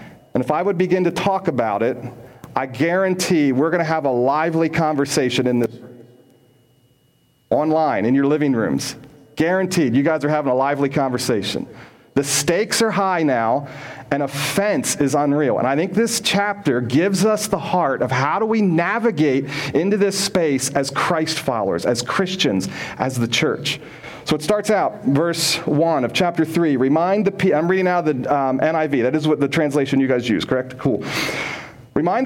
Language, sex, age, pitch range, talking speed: English, male, 40-59, 140-185 Hz, 180 wpm